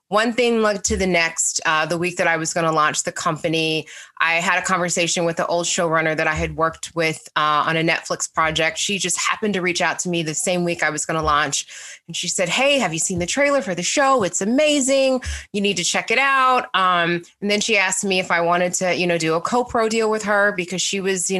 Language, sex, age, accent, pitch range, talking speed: English, female, 20-39, American, 170-210 Hz, 260 wpm